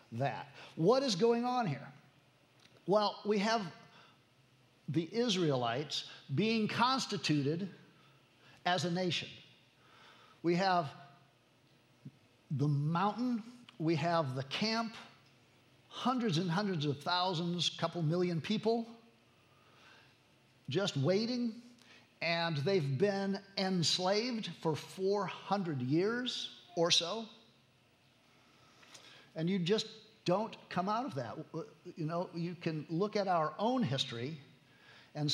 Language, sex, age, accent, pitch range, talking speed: English, male, 50-69, American, 140-195 Hz, 105 wpm